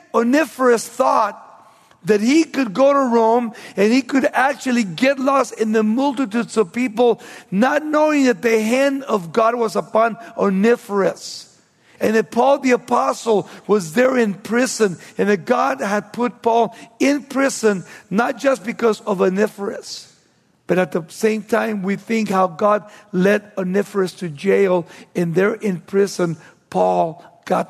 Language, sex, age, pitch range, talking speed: English, male, 50-69, 195-245 Hz, 150 wpm